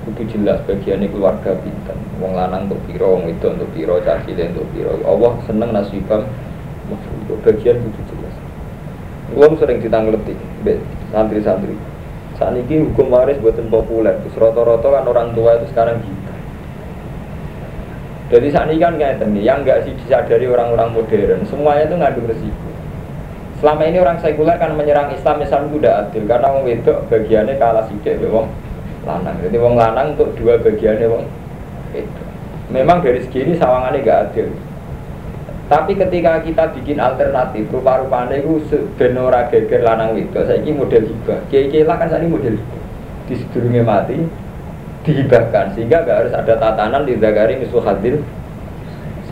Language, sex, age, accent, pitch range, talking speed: Indonesian, male, 20-39, native, 115-165 Hz, 145 wpm